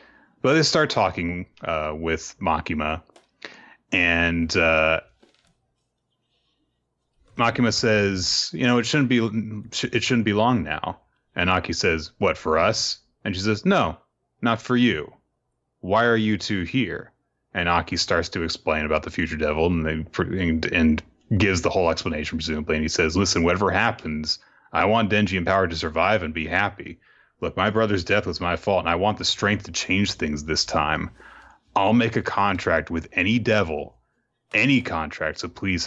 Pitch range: 80-110 Hz